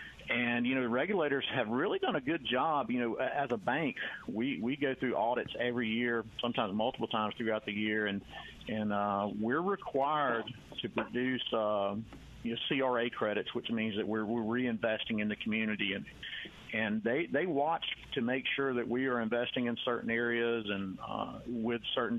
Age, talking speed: 50-69, 185 wpm